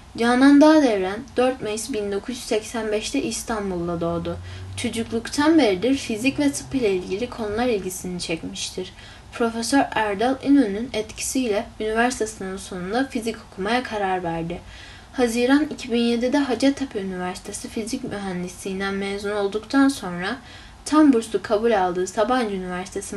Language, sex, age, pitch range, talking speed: Turkish, female, 10-29, 195-245 Hz, 110 wpm